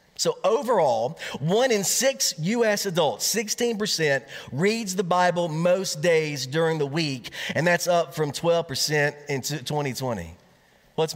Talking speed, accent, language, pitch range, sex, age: 130 wpm, American, English, 155-215 Hz, male, 40-59